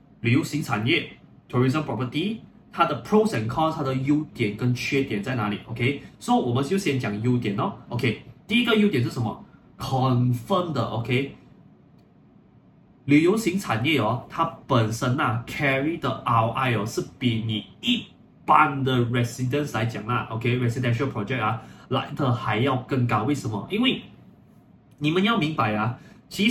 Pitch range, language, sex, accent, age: 115-150 Hz, Chinese, male, native, 20-39